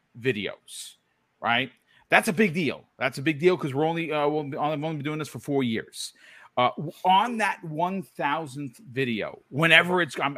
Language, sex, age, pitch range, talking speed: English, male, 40-59, 130-165 Hz, 180 wpm